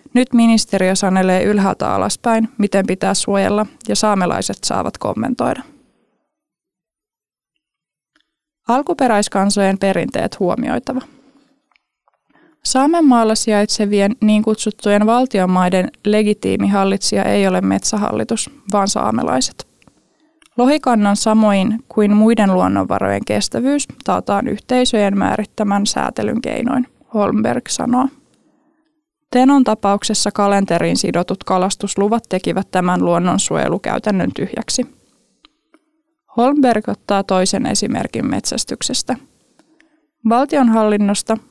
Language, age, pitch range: Finnish, 20-39, 195-255 Hz